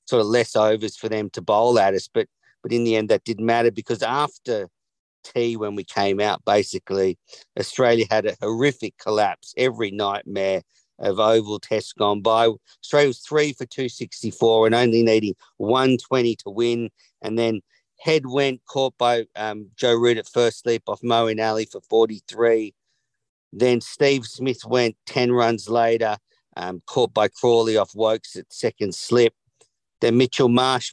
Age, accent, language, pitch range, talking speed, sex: 50-69, Australian, English, 110-125 Hz, 165 wpm, male